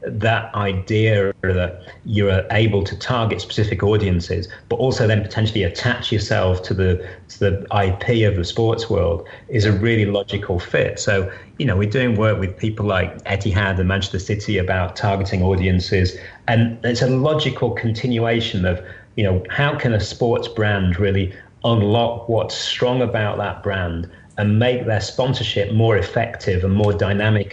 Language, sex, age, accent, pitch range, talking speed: English, male, 30-49, British, 95-115 Hz, 160 wpm